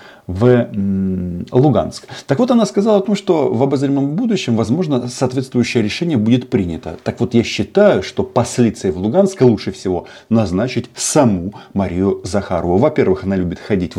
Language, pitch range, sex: Russian, 90-120 Hz, male